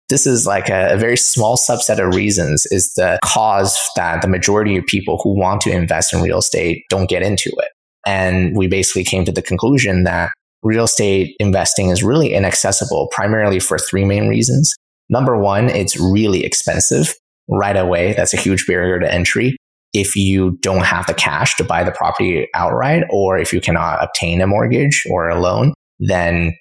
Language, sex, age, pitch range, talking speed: English, male, 20-39, 90-100 Hz, 185 wpm